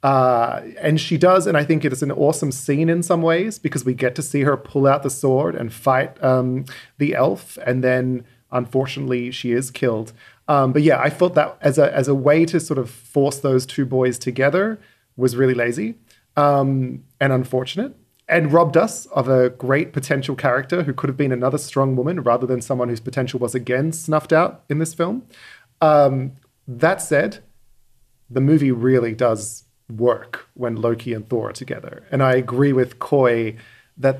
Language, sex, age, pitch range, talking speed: English, male, 30-49, 125-145 Hz, 190 wpm